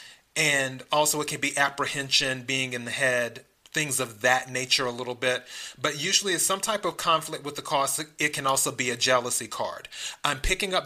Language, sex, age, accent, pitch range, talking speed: English, male, 30-49, American, 130-160 Hz, 205 wpm